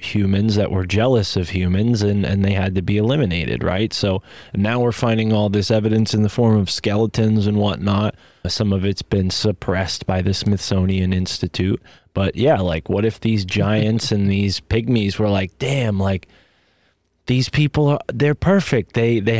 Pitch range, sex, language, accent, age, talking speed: 100-130 Hz, male, English, American, 20-39, 180 wpm